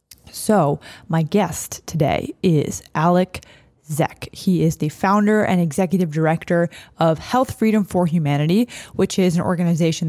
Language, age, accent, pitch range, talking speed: English, 20-39, American, 155-190 Hz, 135 wpm